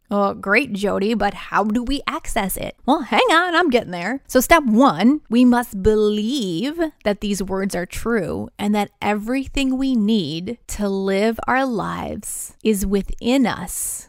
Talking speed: 160 wpm